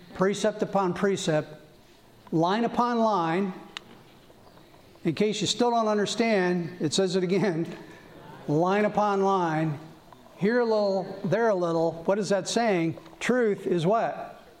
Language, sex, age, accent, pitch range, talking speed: English, male, 50-69, American, 165-205 Hz, 130 wpm